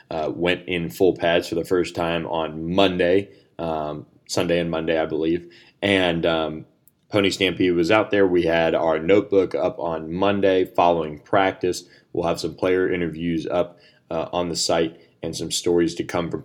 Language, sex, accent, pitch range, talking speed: English, male, American, 85-100 Hz, 180 wpm